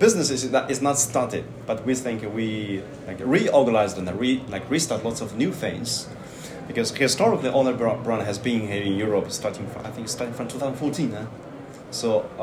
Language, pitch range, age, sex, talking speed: Romanian, 105-135 Hz, 30-49, male, 190 wpm